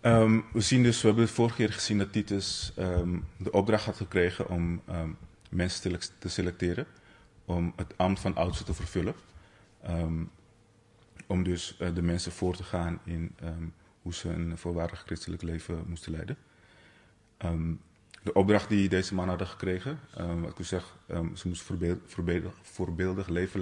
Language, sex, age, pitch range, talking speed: Dutch, male, 30-49, 85-95 Hz, 145 wpm